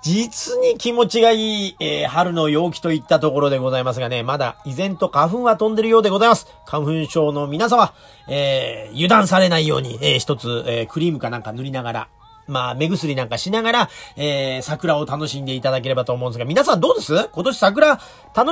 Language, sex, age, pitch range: Japanese, male, 40-59, 140-225 Hz